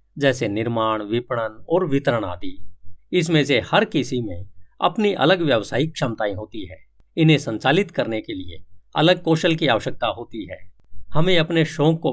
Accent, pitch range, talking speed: native, 105-175 Hz, 160 wpm